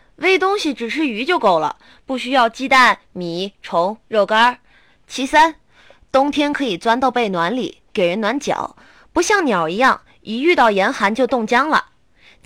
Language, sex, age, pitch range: Chinese, female, 20-39, 195-270 Hz